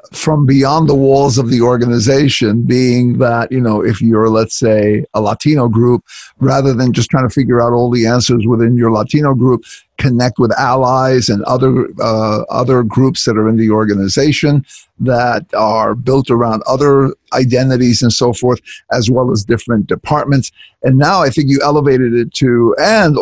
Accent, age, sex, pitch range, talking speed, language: American, 50-69, male, 120-140 Hz, 175 wpm, English